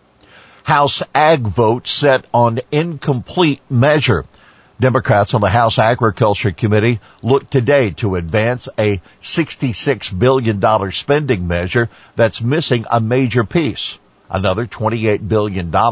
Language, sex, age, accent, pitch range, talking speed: English, male, 50-69, American, 95-125 Hz, 115 wpm